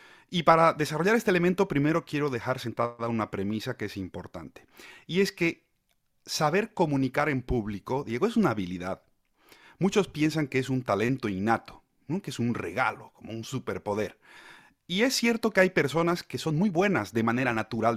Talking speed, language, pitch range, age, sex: 175 wpm, Spanish, 110-170 Hz, 30-49, male